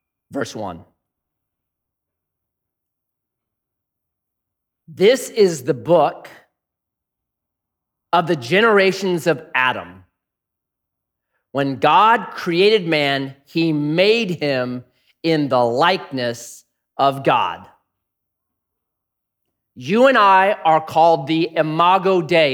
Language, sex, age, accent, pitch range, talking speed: English, male, 40-59, American, 125-195 Hz, 85 wpm